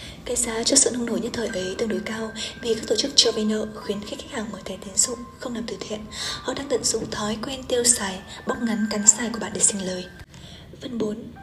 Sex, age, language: female, 20-39, Vietnamese